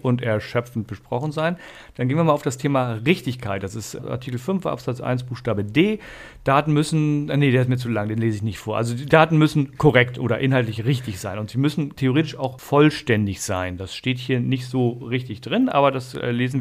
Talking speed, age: 215 wpm, 40-59